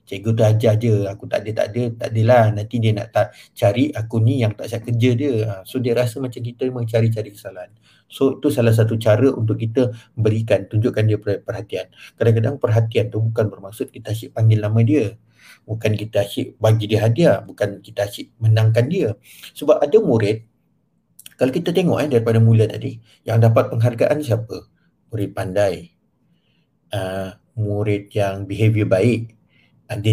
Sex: male